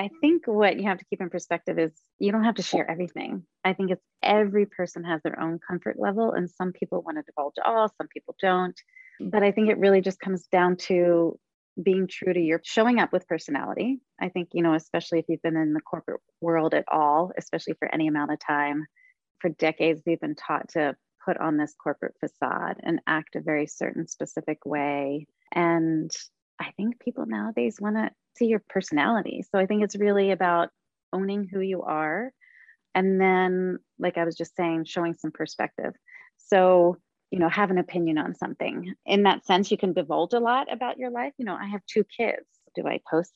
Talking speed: 205 wpm